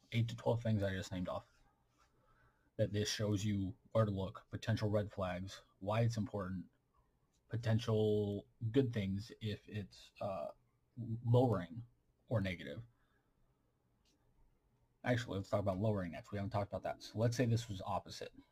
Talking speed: 150 wpm